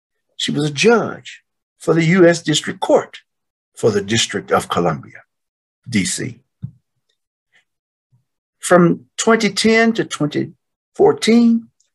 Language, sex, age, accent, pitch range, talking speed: English, male, 60-79, American, 115-190 Hz, 95 wpm